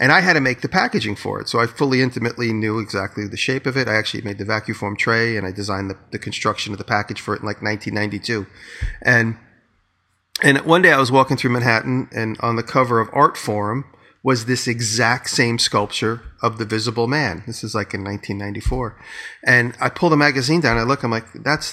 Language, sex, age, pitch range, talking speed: English, male, 40-59, 105-130 Hz, 225 wpm